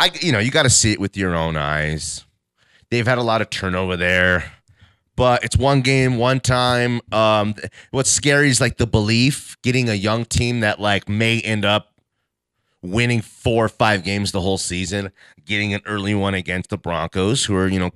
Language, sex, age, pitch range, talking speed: English, male, 30-49, 90-120 Hz, 195 wpm